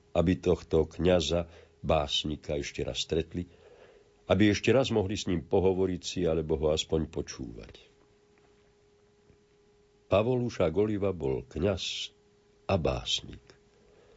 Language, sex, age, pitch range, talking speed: Slovak, male, 50-69, 80-105 Hz, 105 wpm